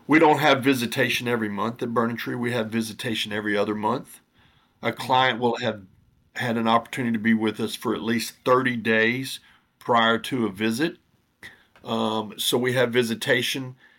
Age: 50-69